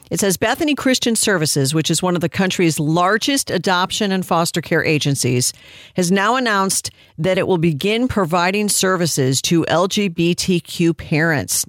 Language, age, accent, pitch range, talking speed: English, 50-69, American, 160-220 Hz, 150 wpm